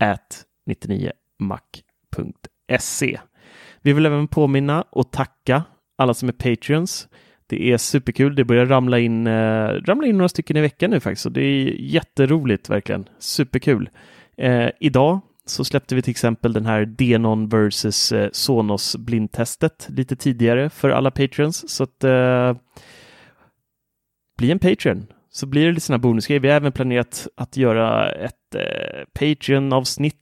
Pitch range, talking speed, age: 110-140 Hz, 145 wpm, 30-49